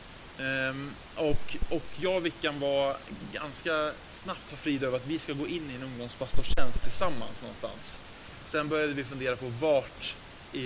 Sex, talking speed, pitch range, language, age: male, 165 wpm, 125-155 Hz, Swedish, 20-39